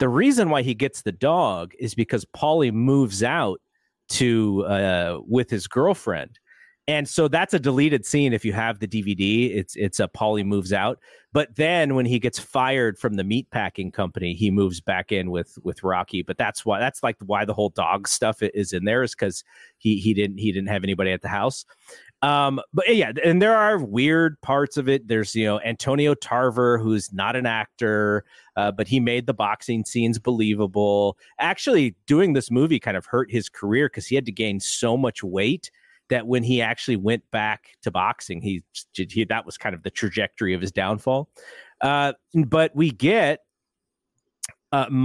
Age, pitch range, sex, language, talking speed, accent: 40-59, 105-135 Hz, male, English, 190 wpm, American